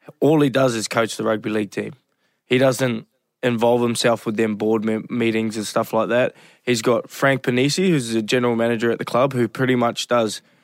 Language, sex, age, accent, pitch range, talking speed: English, male, 20-39, Australian, 115-130 Hz, 210 wpm